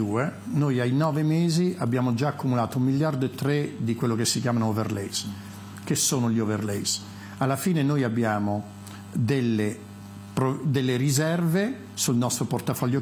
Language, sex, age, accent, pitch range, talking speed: Italian, male, 50-69, native, 110-150 Hz, 145 wpm